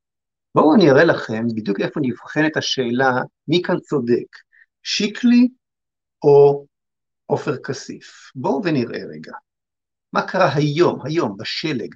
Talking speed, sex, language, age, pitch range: 115 wpm, male, Hebrew, 50-69, 155-210 Hz